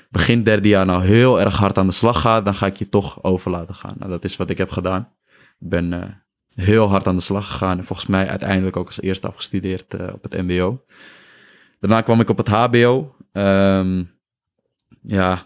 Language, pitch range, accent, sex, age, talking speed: Dutch, 95-105 Hz, Dutch, male, 20-39, 210 wpm